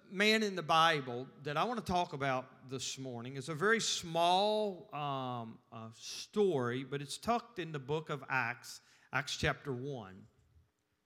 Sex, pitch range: male, 140-185 Hz